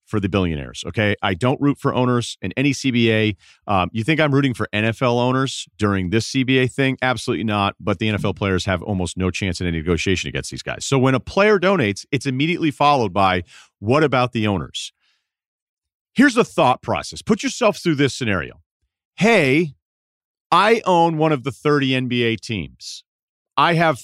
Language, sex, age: English, male, 40-59